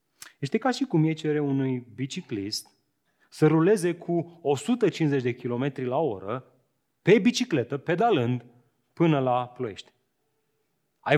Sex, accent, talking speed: male, native, 125 wpm